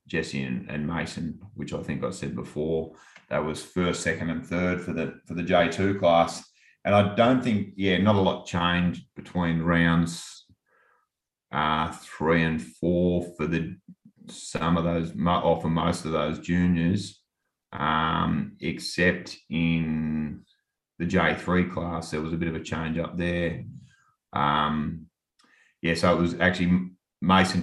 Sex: male